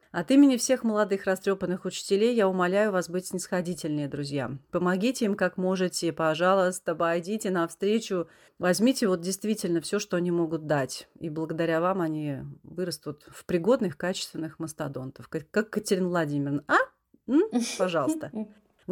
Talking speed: 135 wpm